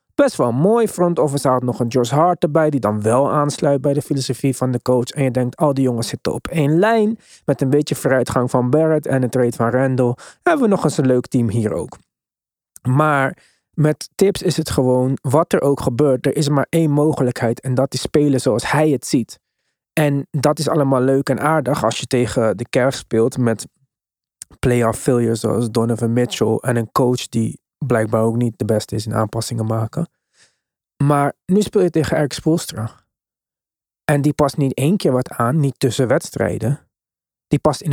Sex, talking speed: male, 200 wpm